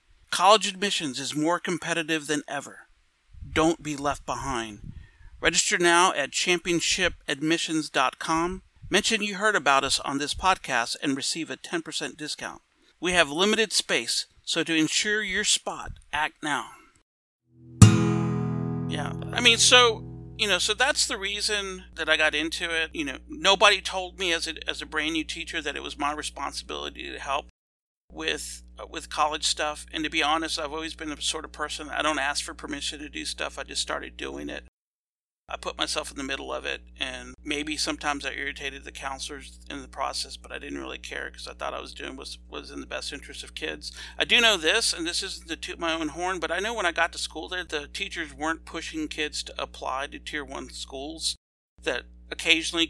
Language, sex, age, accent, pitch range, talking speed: English, male, 50-69, American, 140-175 Hz, 195 wpm